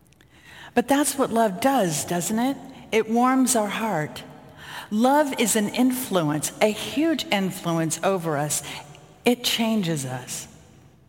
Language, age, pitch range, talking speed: English, 50-69, 155-215 Hz, 125 wpm